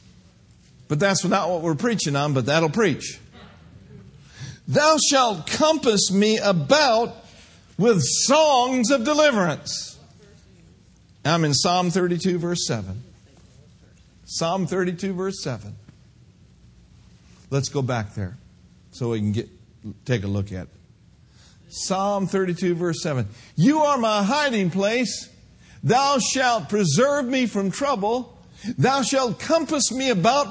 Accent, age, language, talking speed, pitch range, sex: American, 50-69, English, 120 wpm, 140-225 Hz, male